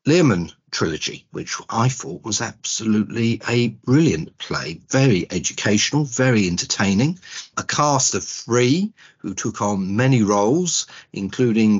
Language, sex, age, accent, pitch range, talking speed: English, male, 50-69, British, 105-135 Hz, 120 wpm